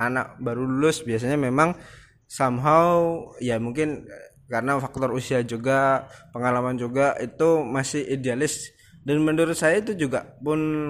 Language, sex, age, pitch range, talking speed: Indonesian, male, 20-39, 130-175 Hz, 125 wpm